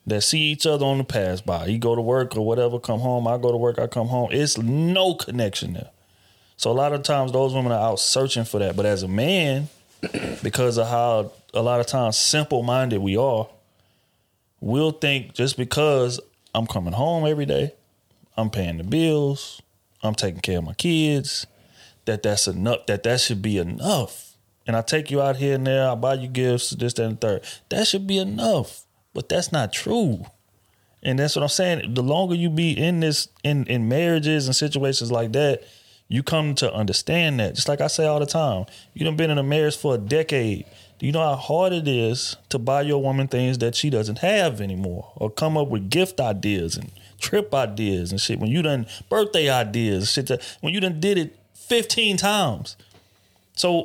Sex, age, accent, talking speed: male, 30-49, American, 210 wpm